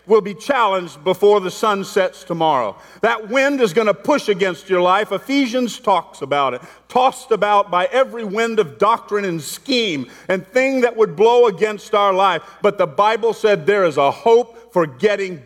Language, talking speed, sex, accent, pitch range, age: English, 185 wpm, male, American, 165-215 Hz, 50-69